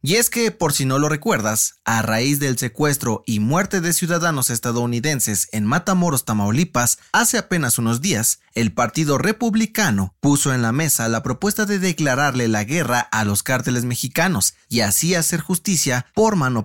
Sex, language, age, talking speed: male, Spanish, 30-49, 170 wpm